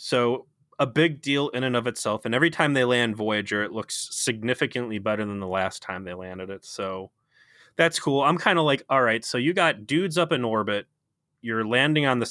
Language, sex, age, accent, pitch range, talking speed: English, male, 20-39, American, 105-135 Hz, 220 wpm